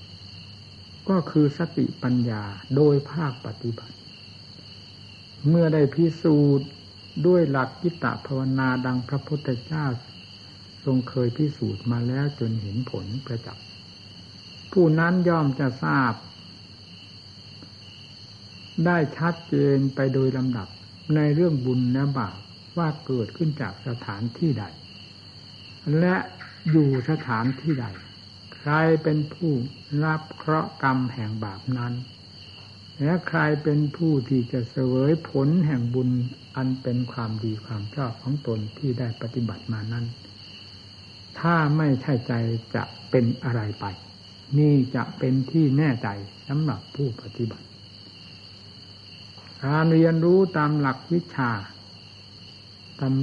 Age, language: 60-79, Thai